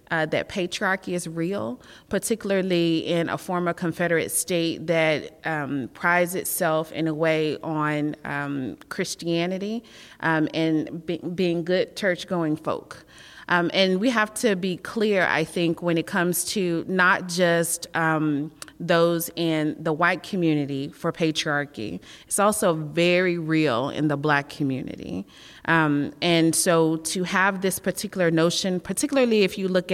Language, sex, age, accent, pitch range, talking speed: English, female, 30-49, American, 155-180 Hz, 140 wpm